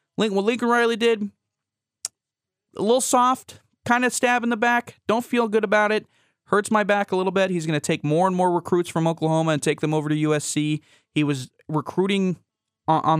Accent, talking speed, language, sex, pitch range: American, 200 wpm, English, male, 150-185 Hz